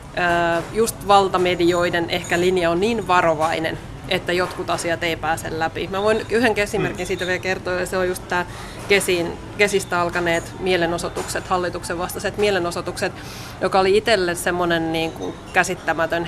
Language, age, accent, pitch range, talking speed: Finnish, 20-39, native, 170-195 Hz, 135 wpm